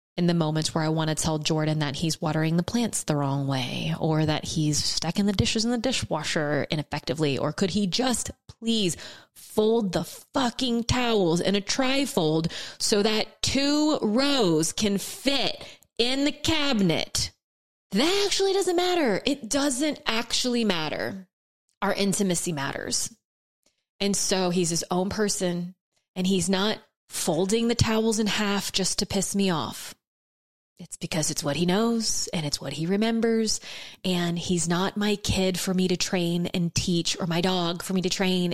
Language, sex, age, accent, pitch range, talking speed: English, female, 20-39, American, 175-225 Hz, 165 wpm